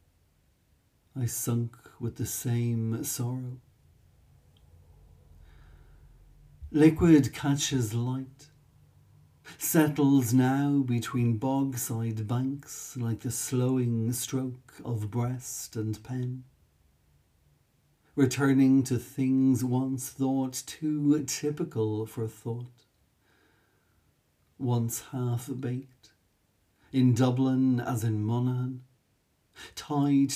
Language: English